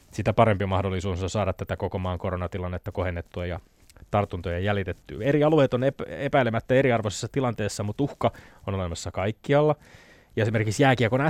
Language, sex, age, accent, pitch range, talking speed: Finnish, male, 20-39, native, 100-125 Hz, 135 wpm